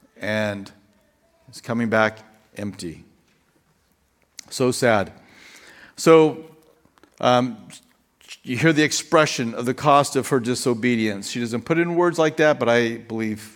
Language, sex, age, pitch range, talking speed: English, male, 50-69, 115-160 Hz, 135 wpm